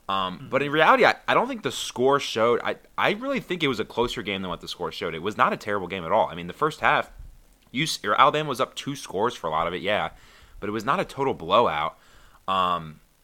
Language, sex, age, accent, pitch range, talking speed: English, male, 20-39, American, 85-105 Hz, 270 wpm